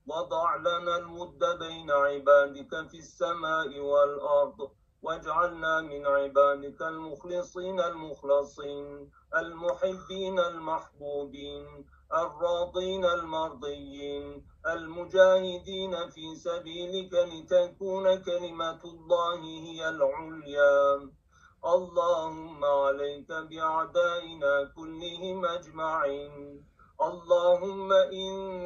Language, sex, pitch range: Turkish, male, 145-175 Hz